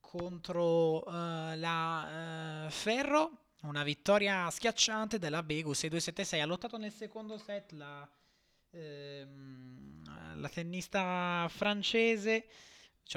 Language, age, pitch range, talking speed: Italian, 20-39, 130-175 Hz, 100 wpm